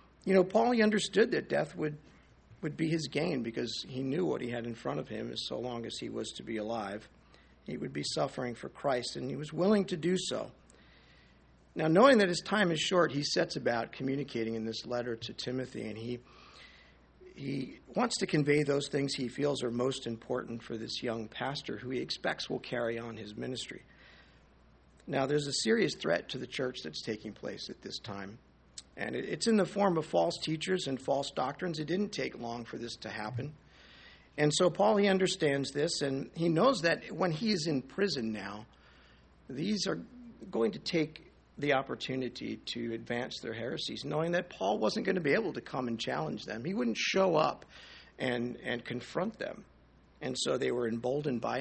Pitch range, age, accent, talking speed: 115-170 Hz, 50-69, American, 200 wpm